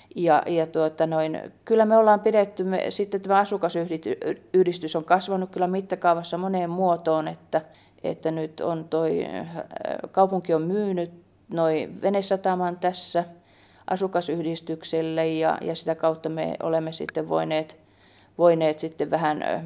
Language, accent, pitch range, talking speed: Finnish, native, 160-185 Hz, 125 wpm